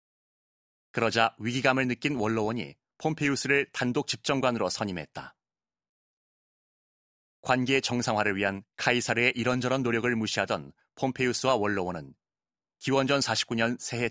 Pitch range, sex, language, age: 105-130 Hz, male, Korean, 30-49